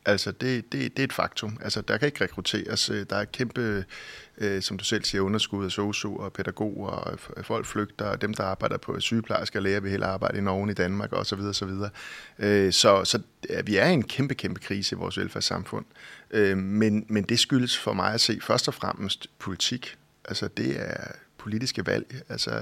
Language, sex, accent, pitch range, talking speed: Danish, male, native, 100-120 Hz, 200 wpm